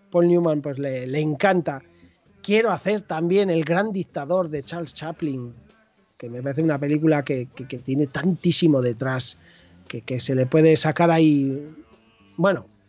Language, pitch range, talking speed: Spanish, 150-190 Hz, 160 wpm